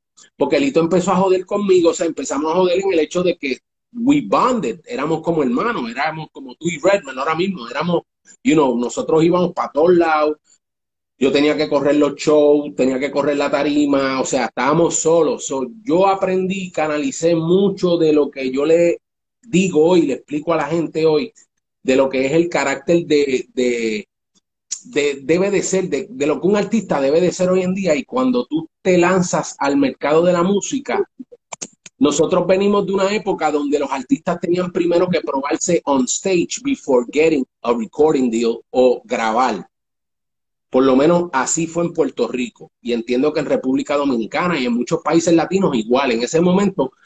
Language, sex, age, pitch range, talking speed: Spanish, male, 30-49, 145-195 Hz, 185 wpm